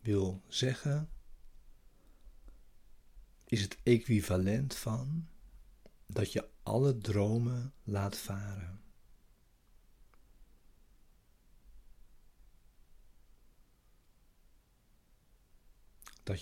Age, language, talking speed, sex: 60-79, Dutch, 50 wpm, male